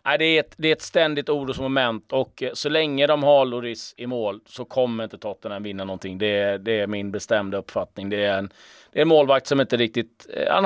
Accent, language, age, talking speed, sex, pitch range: native, Swedish, 30-49, 230 wpm, male, 110-140 Hz